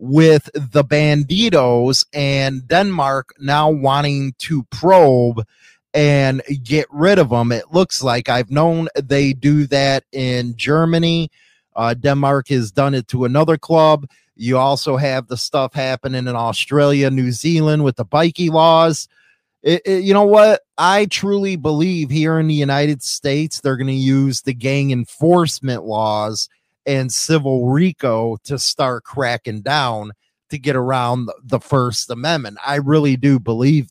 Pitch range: 130-165 Hz